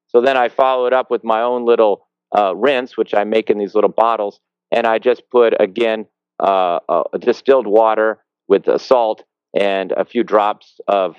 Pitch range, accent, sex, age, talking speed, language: 85-115 Hz, American, male, 40-59, 200 wpm, English